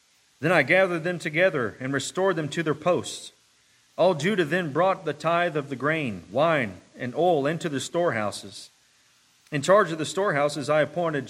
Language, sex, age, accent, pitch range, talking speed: English, male, 40-59, American, 130-165 Hz, 175 wpm